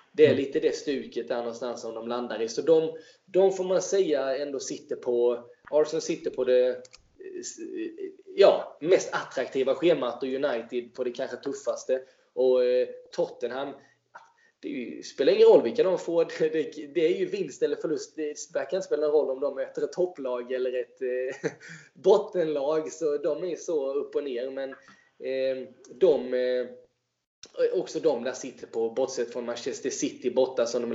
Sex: male